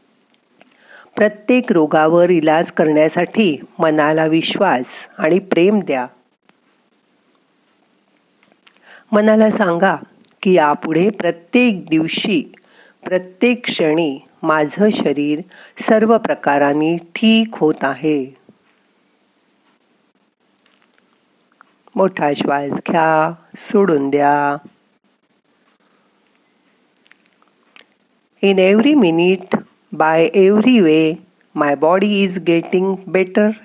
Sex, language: female, Marathi